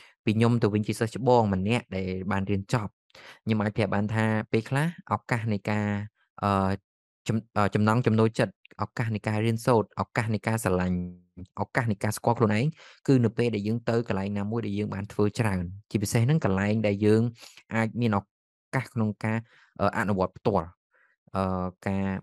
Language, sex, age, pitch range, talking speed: English, male, 20-39, 100-115 Hz, 125 wpm